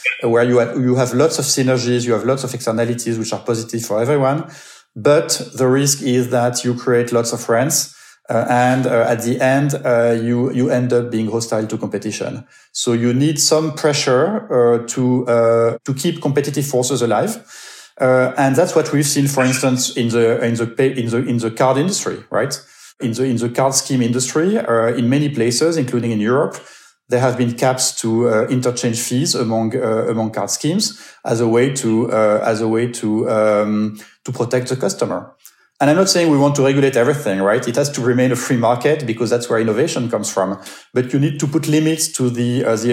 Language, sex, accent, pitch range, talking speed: English, male, French, 115-135 Hz, 205 wpm